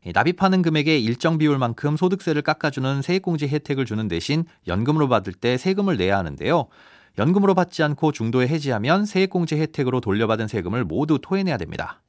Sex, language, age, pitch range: male, Korean, 40-59, 110-165 Hz